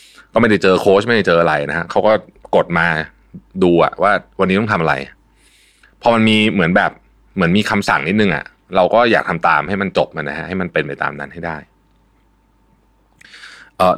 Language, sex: Thai, male